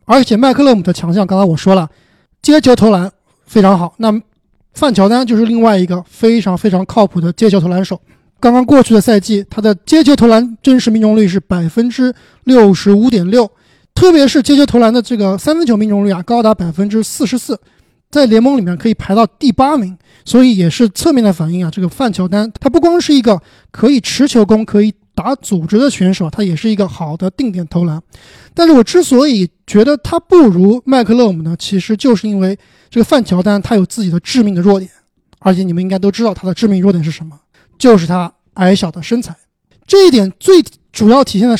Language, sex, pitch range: Chinese, male, 190-245 Hz